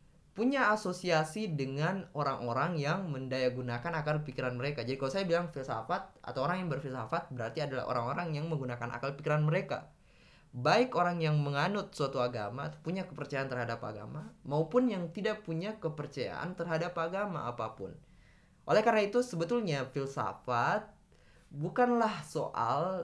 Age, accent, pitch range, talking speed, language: 20-39, native, 130-175 Hz, 135 wpm, Indonesian